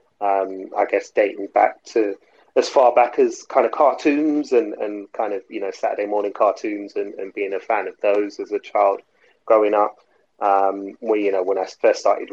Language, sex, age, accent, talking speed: English, male, 30-49, British, 205 wpm